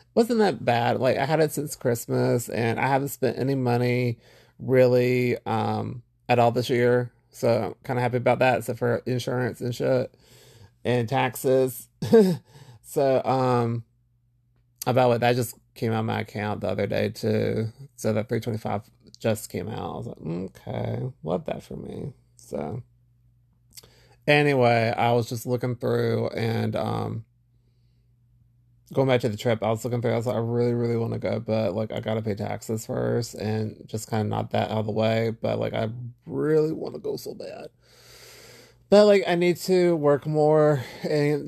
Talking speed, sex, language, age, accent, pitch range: 180 wpm, male, English, 30-49, American, 115-130 Hz